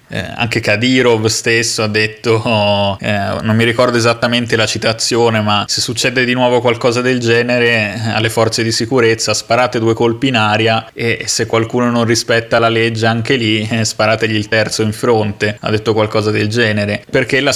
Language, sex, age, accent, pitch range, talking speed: Italian, male, 20-39, native, 110-120 Hz, 180 wpm